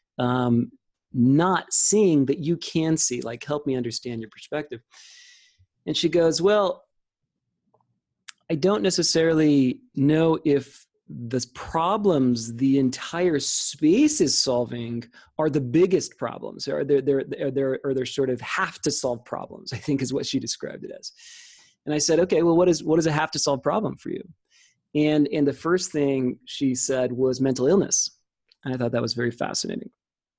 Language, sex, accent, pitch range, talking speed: English, male, American, 125-165 Hz, 170 wpm